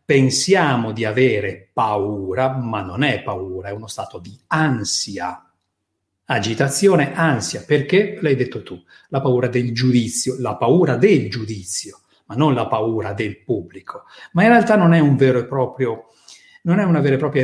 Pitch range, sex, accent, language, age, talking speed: 115-165 Hz, male, native, Italian, 40-59, 165 wpm